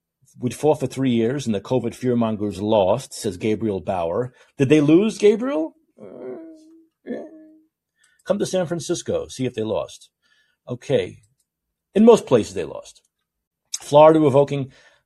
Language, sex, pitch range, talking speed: English, male, 120-185 Hz, 130 wpm